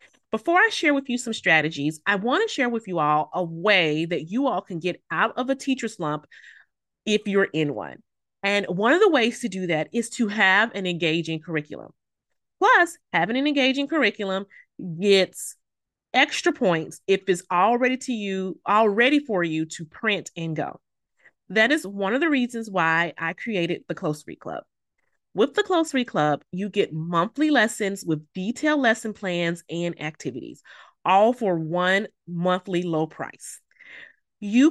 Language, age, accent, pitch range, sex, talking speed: English, 30-49, American, 170-235 Hz, female, 175 wpm